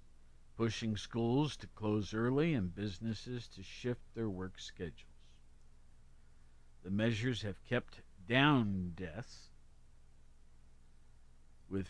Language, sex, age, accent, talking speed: English, male, 50-69, American, 95 wpm